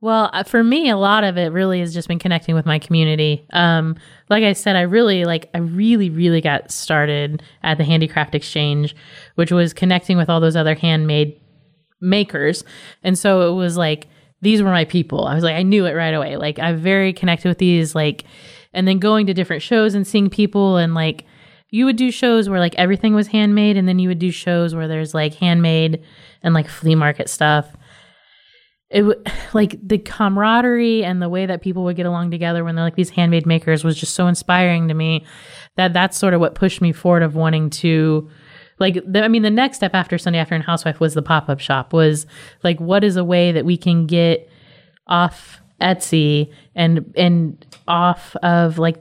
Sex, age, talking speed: female, 20-39, 205 wpm